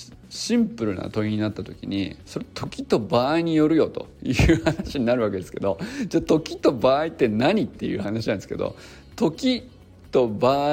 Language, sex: Japanese, male